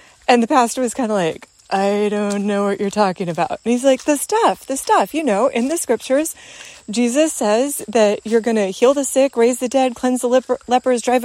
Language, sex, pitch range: English, female, 210-285 Hz